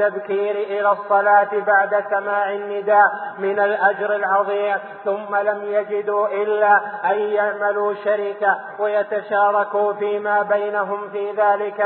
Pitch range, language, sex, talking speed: 195-205 Hz, Arabic, male, 100 wpm